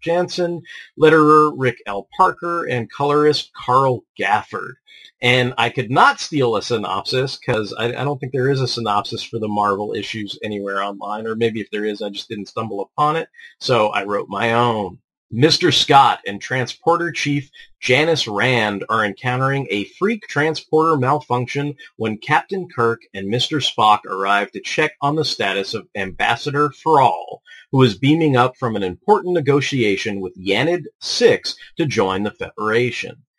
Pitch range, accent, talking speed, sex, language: 110-155 Hz, American, 160 wpm, male, English